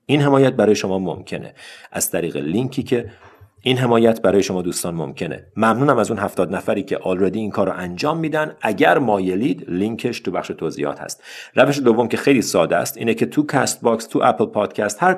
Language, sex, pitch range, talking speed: Persian, male, 95-135 Hz, 190 wpm